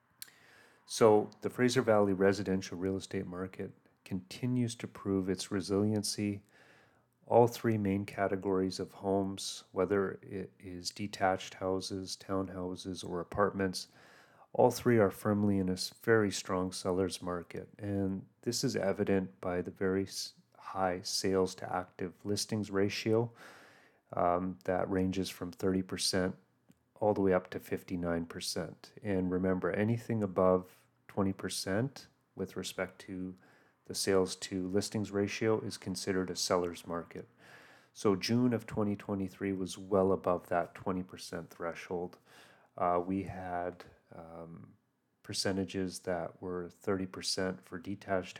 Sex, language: male, English